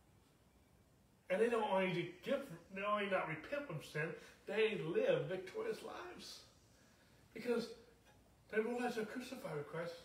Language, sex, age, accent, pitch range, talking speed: English, male, 60-79, American, 210-260 Hz, 145 wpm